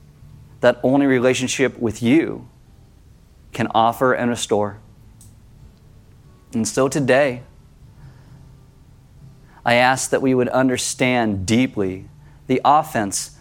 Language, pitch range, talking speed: English, 110-130 Hz, 95 wpm